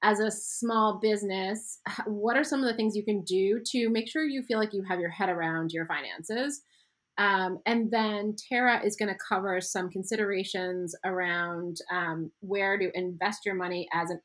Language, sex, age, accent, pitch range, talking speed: English, female, 30-49, American, 175-215 Hz, 190 wpm